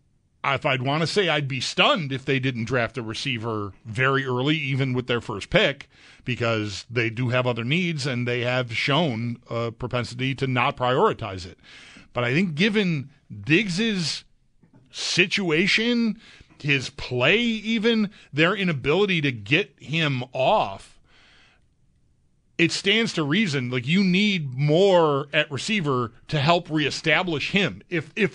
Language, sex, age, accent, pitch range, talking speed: English, male, 40-59, American, 125-170 Hz, 145 wpm